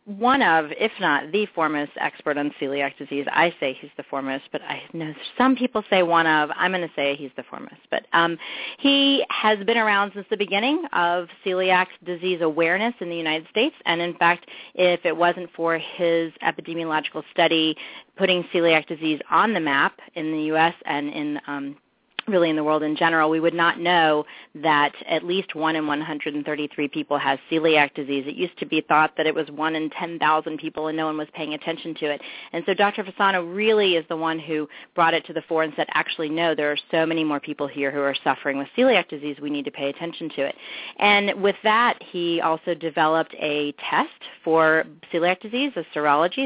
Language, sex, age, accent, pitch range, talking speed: English, female, 30-49, American, 150-175 Hz, 205 wpm